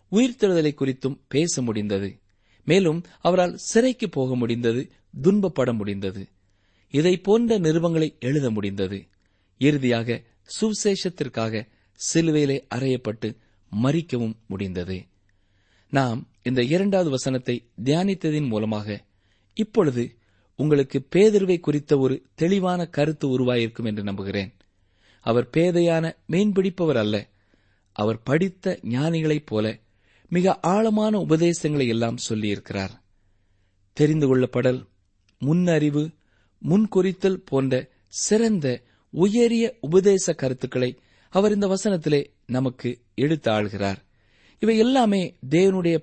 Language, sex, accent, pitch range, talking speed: Tamil, male, native, 105-175 Hz, 85 wpm